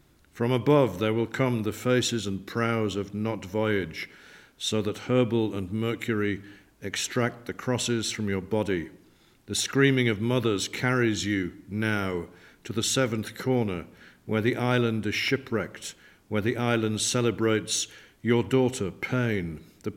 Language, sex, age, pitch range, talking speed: English, male, 50-69, 105-125 Hz, 140 wpm